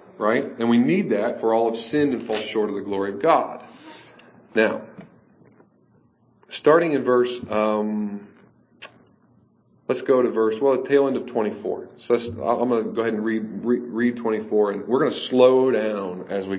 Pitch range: 110-140 Hz